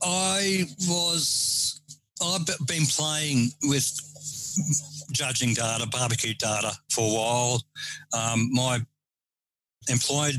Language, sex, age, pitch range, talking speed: English, male, 60-79, 120-150 Hz, 90 wpm